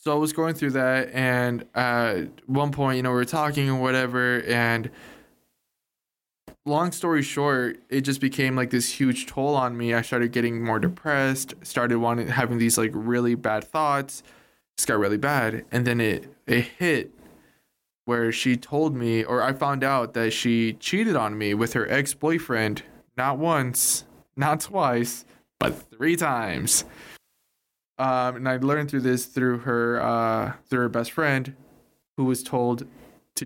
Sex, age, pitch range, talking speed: male, 20-39, 120-140 Hz, 165 wpm